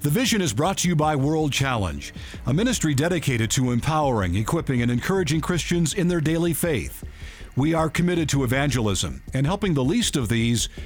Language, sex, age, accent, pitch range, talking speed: English, male, 50-69, American, 125-165 Hz, 180 wpm